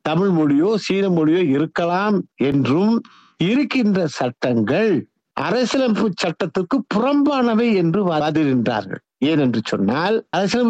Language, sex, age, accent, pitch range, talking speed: Tamil, male, 60-79, native, 145-225 Hz, 85 wpm